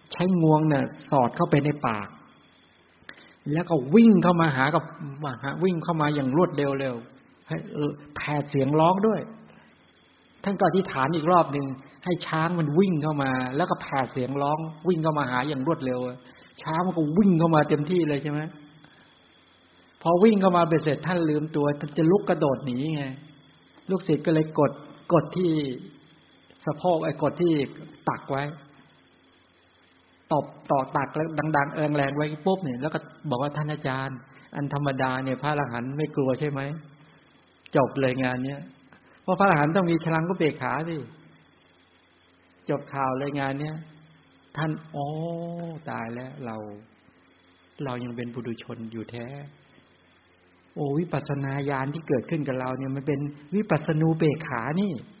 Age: 60-79